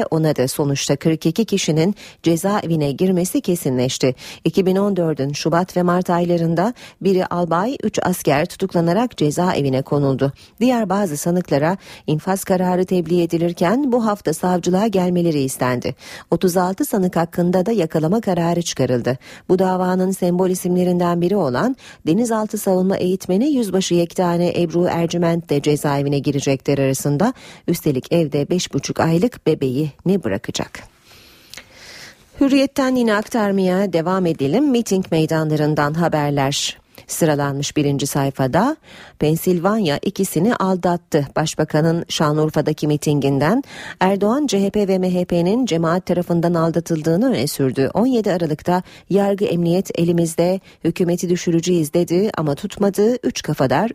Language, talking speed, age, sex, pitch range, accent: Turkish, 110 wpm, 40-59, female, 150-195 Hz, native